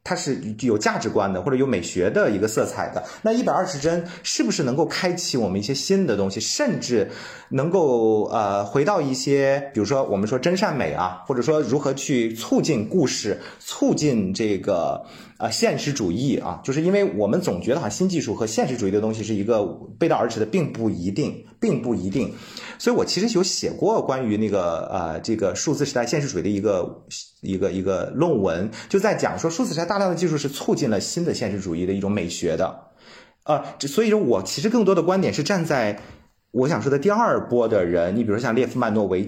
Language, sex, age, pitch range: Chinese, male, 30-49, 110-180 Hz